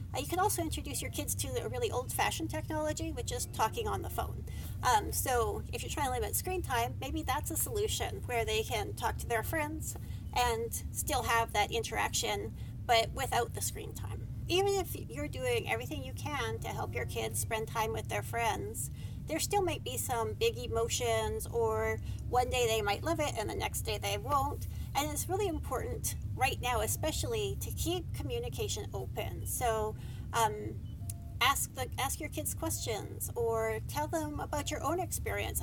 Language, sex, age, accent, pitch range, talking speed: English, female, 40-59, American, 100-115 Hz, 185 wpm